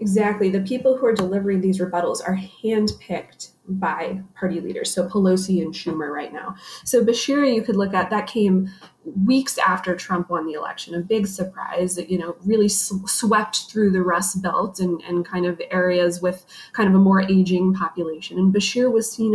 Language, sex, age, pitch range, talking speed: English, female, 20-39, 185-220 Hz, 190 wpm